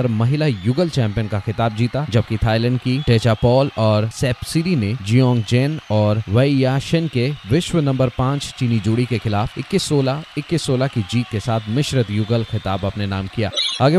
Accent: native